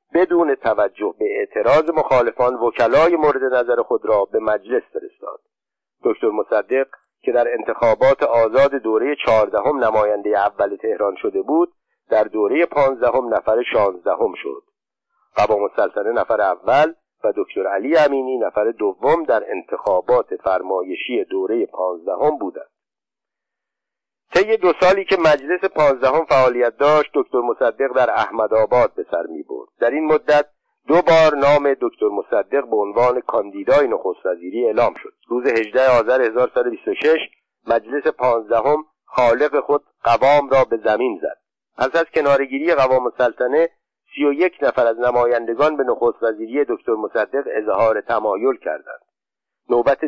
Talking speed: 130 wpm